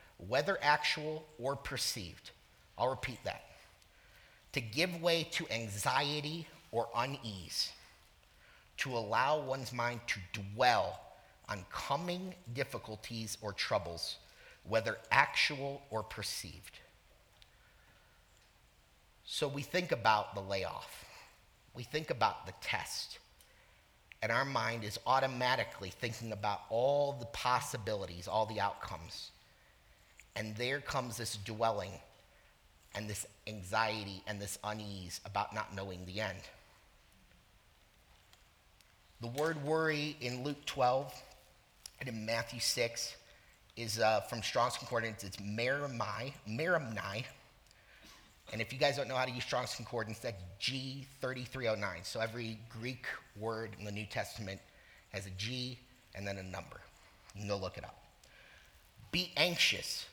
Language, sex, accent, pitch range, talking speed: English, male, American, 100-130 Hz, 125 wpm